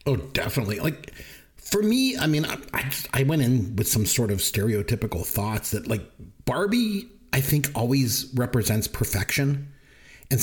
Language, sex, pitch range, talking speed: English, male, 105-140 Hz, 160 wpm